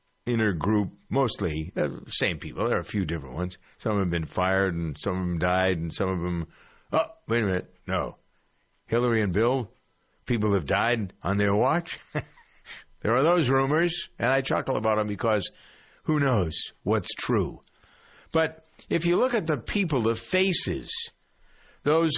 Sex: male